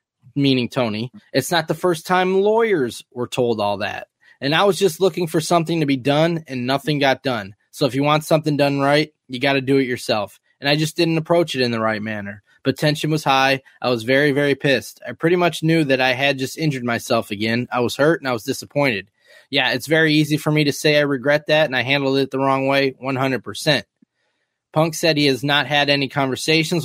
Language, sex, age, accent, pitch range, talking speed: English, male, 20-39, American, 130-160 Hz, 235 wpm